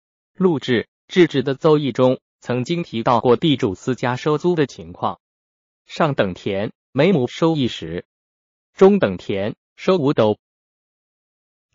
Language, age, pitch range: Chinese, 20-39, 115-165 Hz